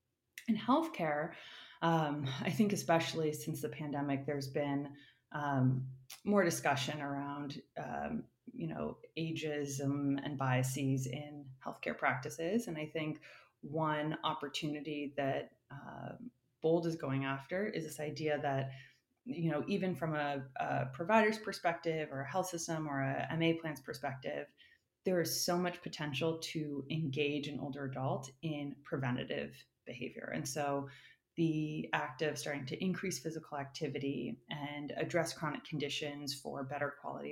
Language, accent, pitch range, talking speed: English, American, 140-165 Hz, 140 wpm